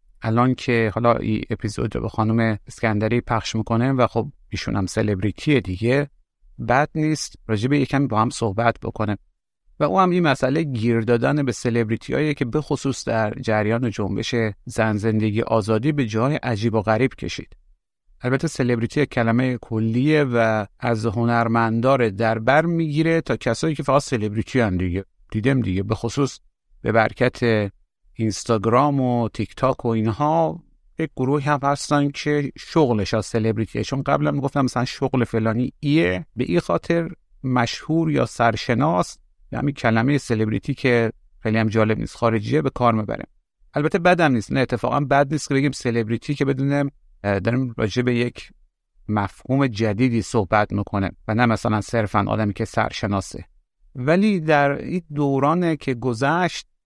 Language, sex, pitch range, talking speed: Persian, male, 110-140 Hz, 150 wpm